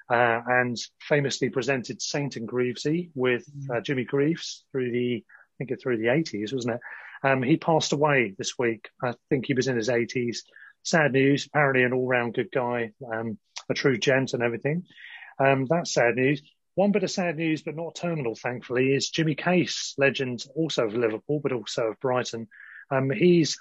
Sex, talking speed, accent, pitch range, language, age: male, 185 wpm, British, 120-150 Hz, English, 30-49